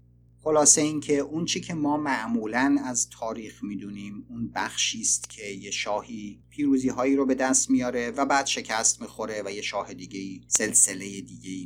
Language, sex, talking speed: Persian, male, 175 wpm